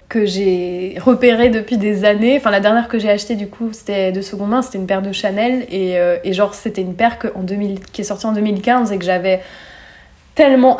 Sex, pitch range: female, 200-245 Hz